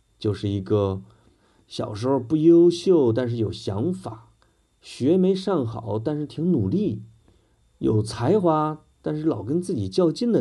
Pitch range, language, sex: 105-130 Hz, Chinese, male